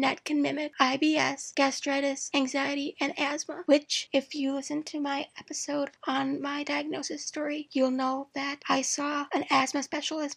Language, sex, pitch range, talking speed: English, female, 275-305 Hz, 155 wpm